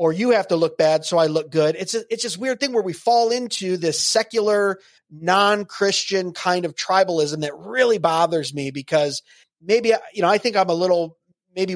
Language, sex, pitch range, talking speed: English, male, 160-220 Hz, 205 wpm